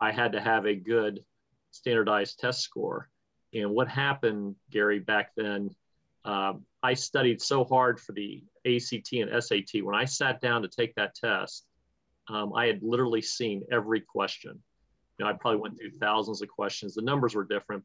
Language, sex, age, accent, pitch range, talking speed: English, male, 40-59, American, 105-120 Hz, 180 wpm